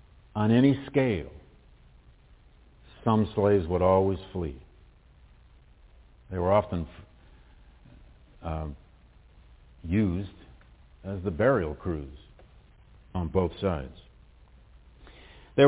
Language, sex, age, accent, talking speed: English, male, 50-69, American, 80 wpm